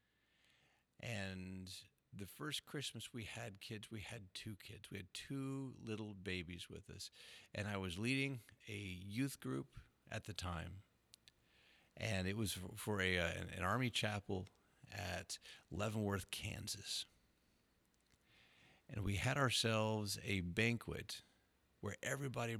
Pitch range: 95-115 Hz